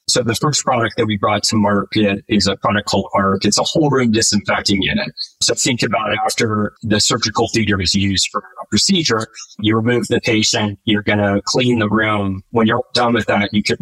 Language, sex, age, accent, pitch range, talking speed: English, male, 30-49, American, 100-115 Hz, 215 wpm